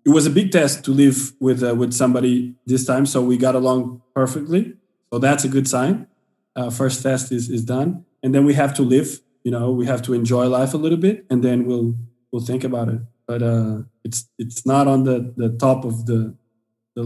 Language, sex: English, male